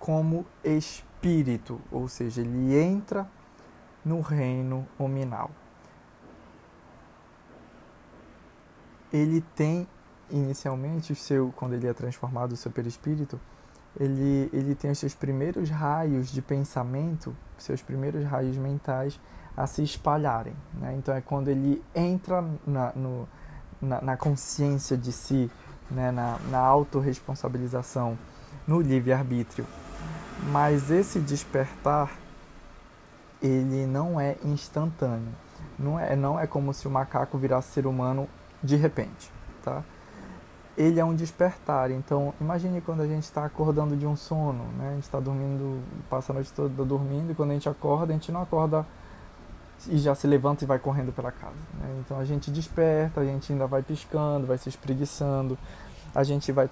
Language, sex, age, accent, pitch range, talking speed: Portuguese, male, 20-39, Brazilian, 130-150 Hz, 140 wpm